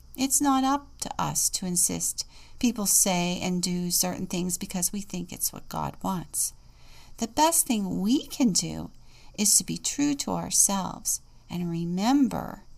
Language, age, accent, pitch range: English, 50-69, American, 170-245 Hz